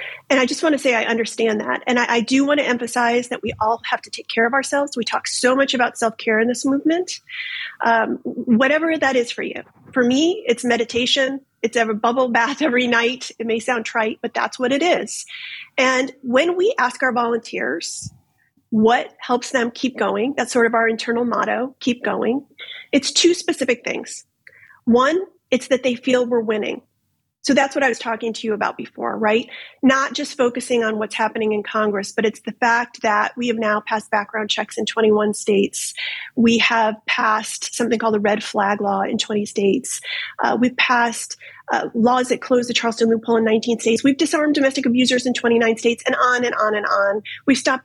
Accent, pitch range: American, 225-275 Hz